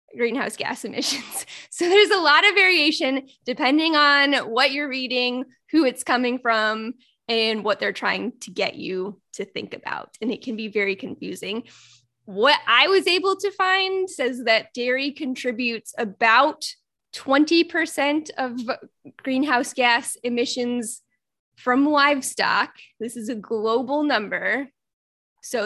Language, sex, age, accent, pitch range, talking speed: English, female, 10-29, American, 220-280 Hz, 135 wpm